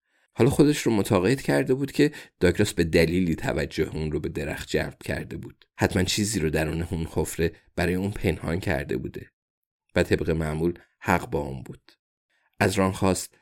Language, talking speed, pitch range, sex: Persian, 175 wpm, 85-105 Hz, male